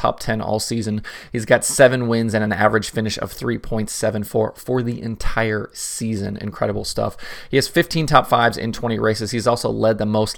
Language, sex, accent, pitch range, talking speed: English, male, American, 105-125 Hz, 190 wpm